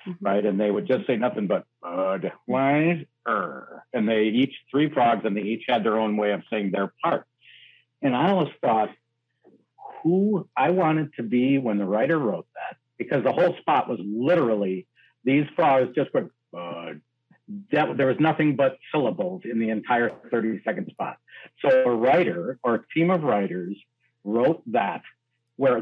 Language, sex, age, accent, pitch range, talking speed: English, male, 60-79, American, 115-155 Hz, 165 wpm